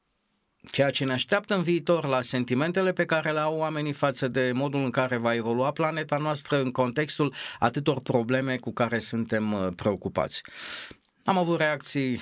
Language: Romanian